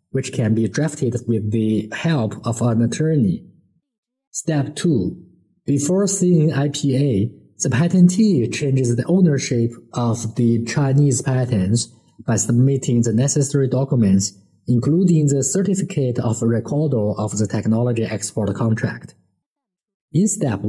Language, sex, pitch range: Chinese, male, 120-175 Hz